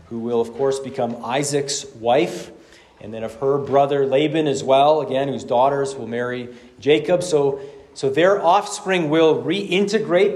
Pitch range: 135-160 Hz